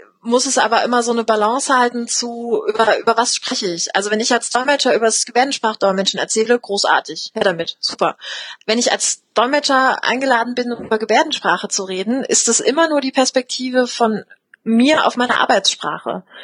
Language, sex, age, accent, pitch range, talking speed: English, female, 30-49, German, 215-250 Hz, 175 wpm